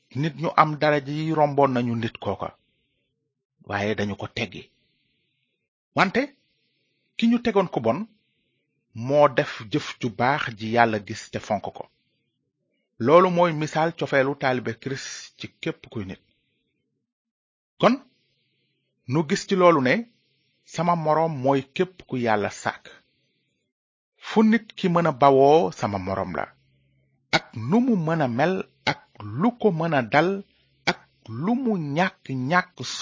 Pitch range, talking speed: 115-170 Hz, 115 wpm